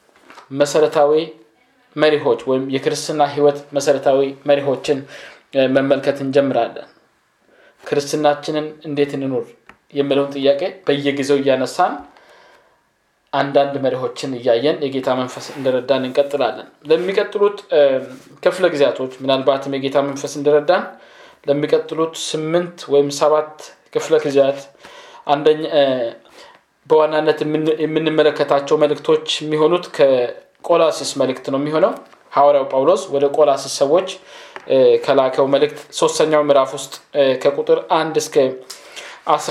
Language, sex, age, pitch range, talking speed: Amharic, male, 20-39, 140-165 Hz, 75 wpm